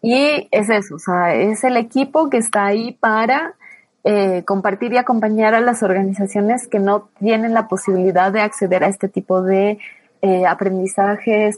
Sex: female